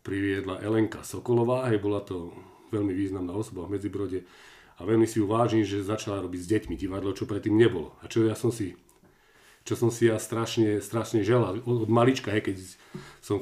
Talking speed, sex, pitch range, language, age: 180 wpm, male, 100-125 Hz, Slovak, 40-59